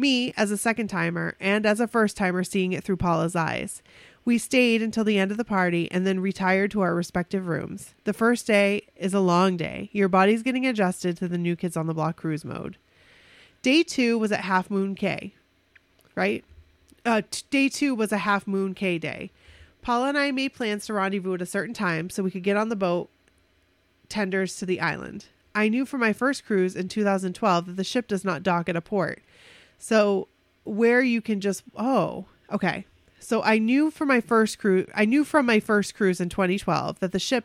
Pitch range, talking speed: 180-220 Hz, 200 wpm